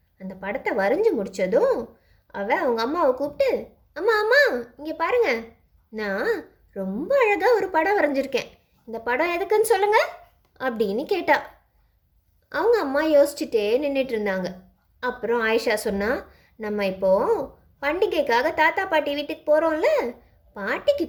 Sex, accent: female, native